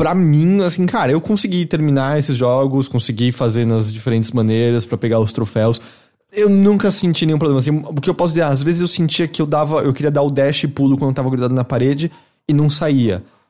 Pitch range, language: 120-165 Hz, English